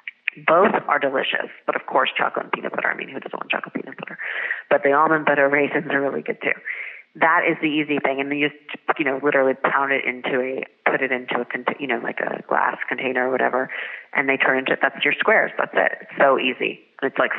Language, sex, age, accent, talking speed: English, female, 30-49, American, 240 wpm